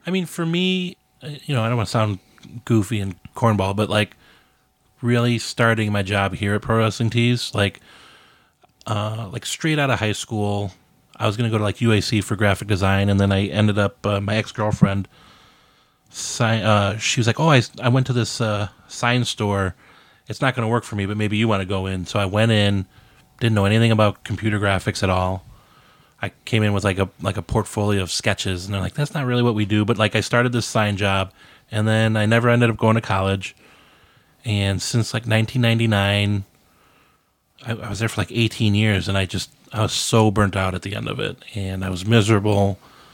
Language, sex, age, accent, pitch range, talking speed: English, male, 20-39, American, 100-115 Hz, 215 wpm